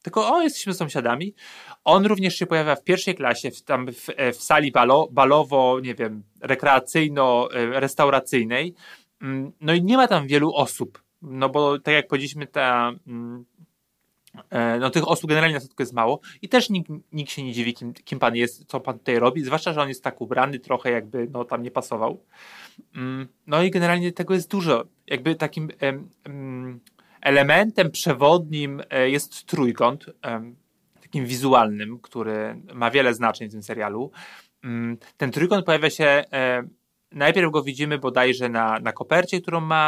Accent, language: native, Polish